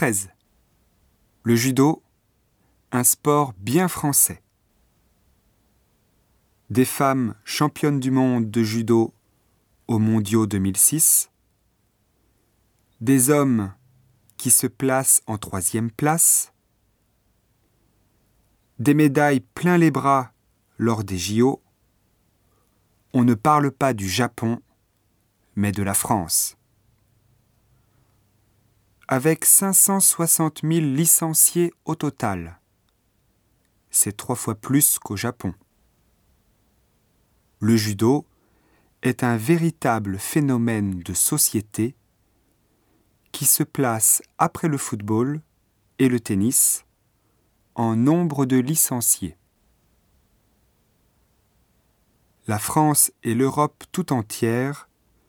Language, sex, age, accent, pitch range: Japanese, male, 30-49, French, 105-135 Hz